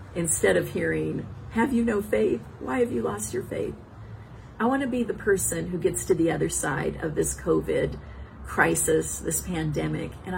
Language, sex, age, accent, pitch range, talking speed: English, female, 50-69, American, 140-225 Hz, 180 wpm